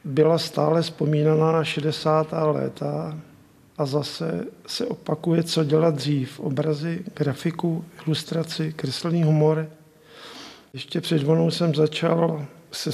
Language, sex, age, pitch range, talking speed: Czech, male, 50-69, 150-165 Hz, 105 wpm